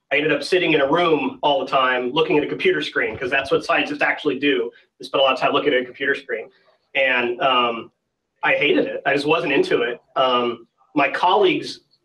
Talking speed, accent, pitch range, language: 225 wpm, American, 130-180 Hz, English